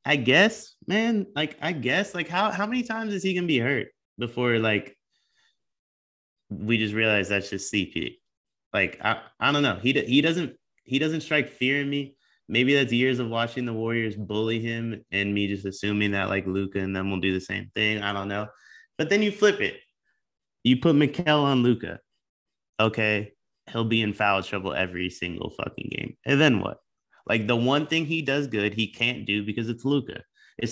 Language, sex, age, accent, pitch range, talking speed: English, male, 20-39, American, 105-145 Hz, 200 wpm